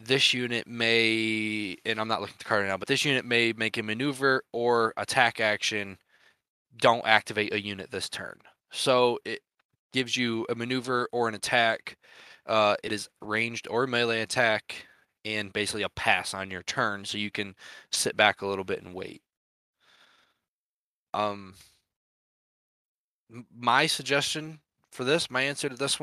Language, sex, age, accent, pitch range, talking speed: English, male, 20-39, American, 105-135 Hz, 160 wpm